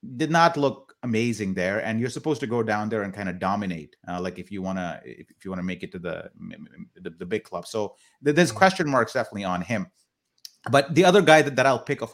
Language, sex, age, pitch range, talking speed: English, male, 30-49, 105-140 Hz, 255 wpm